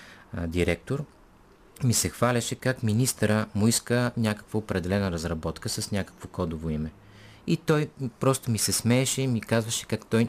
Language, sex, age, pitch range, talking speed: Bulgarian, male, 30-49, 85-115 Hz, 150 wpm